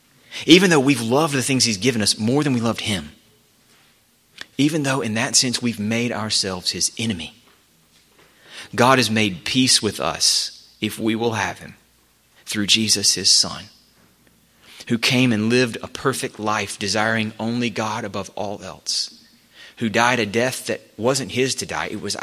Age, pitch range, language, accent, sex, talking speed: 30-49, 100-120 Hz, English, American, male, 170 wpm